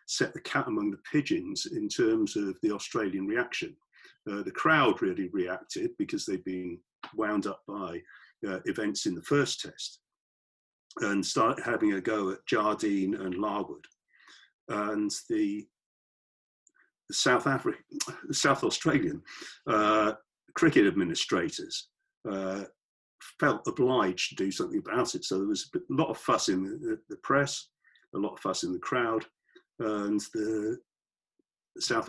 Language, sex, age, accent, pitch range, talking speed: English, male, 50-69, British, 305-360 Hz, 145 wpm